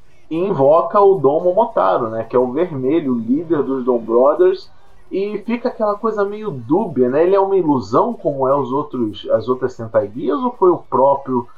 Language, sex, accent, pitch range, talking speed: Portuguese, male, Brazilian, 125-195 Hz, 180 wpm